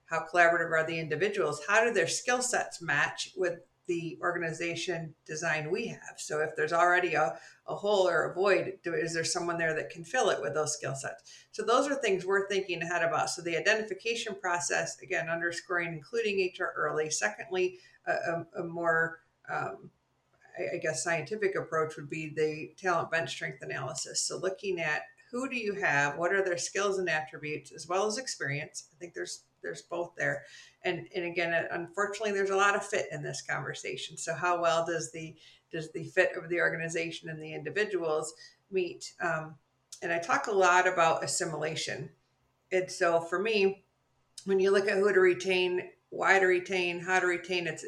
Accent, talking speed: American, 185 wpm